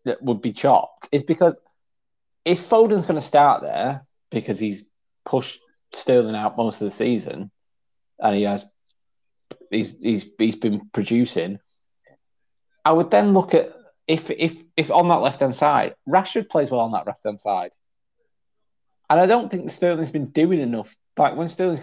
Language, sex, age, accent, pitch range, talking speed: English, male, 30-49, British, 115-165 Hz, 160 wpm